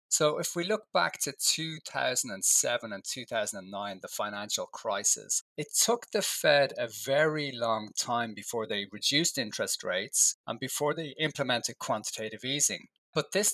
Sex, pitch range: male, 115-150 Hz